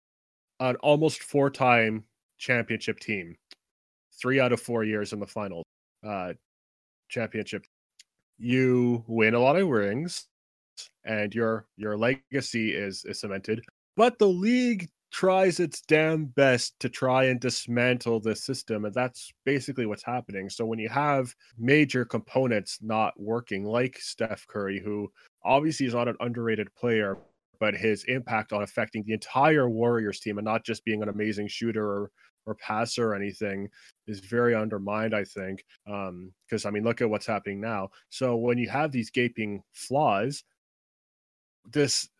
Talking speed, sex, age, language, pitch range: 150 wpm, male, 20-39, English, 110-140 Hz